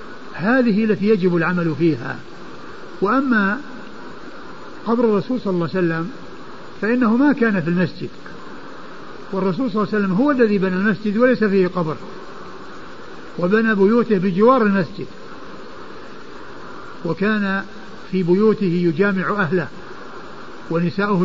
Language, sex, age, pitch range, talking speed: Arabic, male, 60-79, 180-230 Hz, 110 wpm